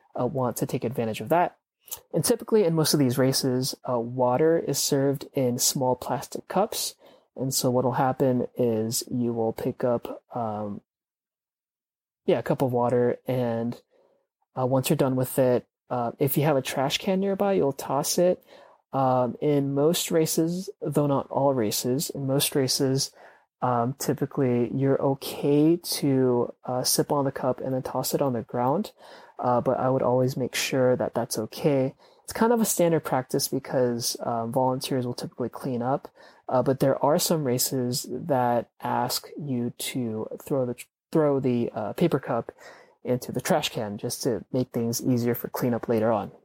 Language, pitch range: English, 120-150 Hz